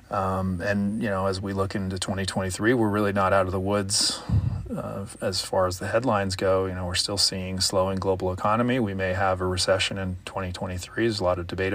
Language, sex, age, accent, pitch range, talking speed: English, male, 30-49, American, 95-110 Hz, 220 wpm